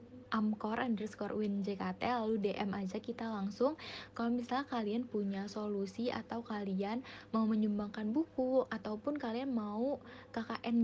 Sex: female